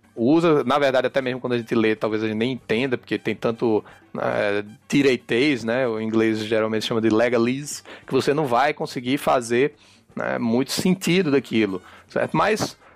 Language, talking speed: Portuguese, 175 wpm